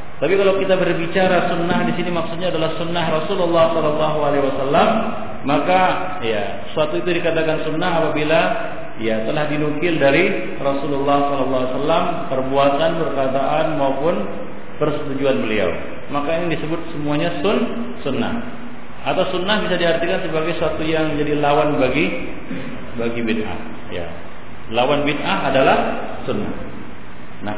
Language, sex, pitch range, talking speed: Malay, male, 140-185 Hz, 115 wpm